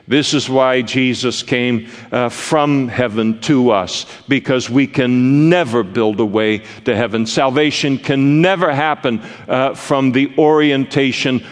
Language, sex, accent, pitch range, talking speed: English, male, American, 125-155 Hz, 140 wpm